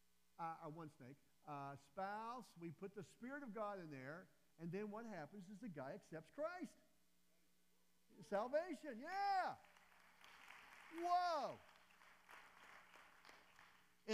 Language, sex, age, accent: English, male, 50-69, American